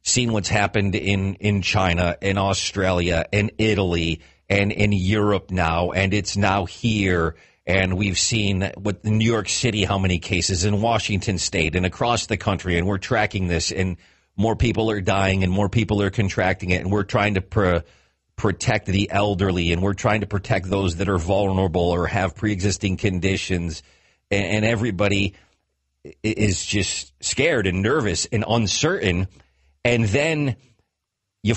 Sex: male